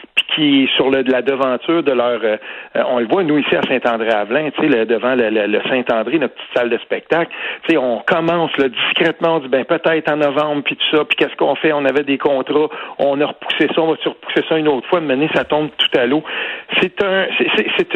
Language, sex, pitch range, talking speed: French, male, 135-180 Hz, 240 wpm